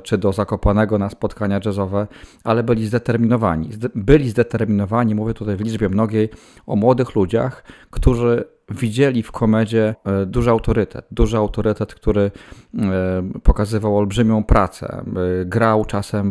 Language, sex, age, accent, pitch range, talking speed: Polish, male, 40-59, native, 105-120 Hz, 120 wpm